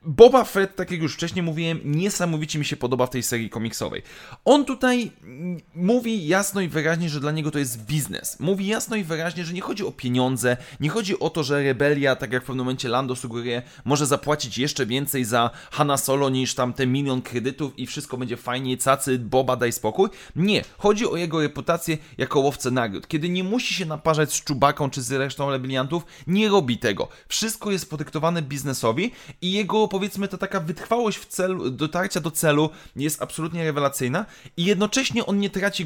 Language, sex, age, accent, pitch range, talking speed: Polish, male, 30-49, native, 135-185 Hz, 190 wpm